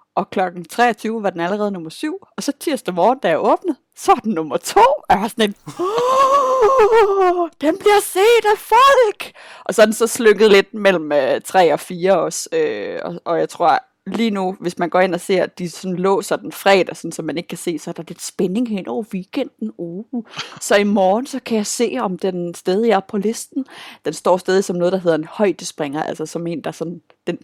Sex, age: female, 30-49